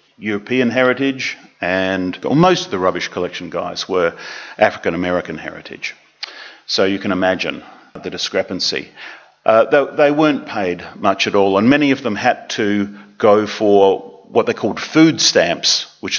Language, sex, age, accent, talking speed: English, male, 50-69, Australian, 150 wpm